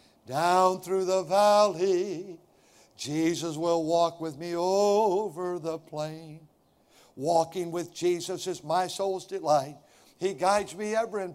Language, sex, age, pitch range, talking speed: English, male, 60-79, 170-230 Hz, 125 wpm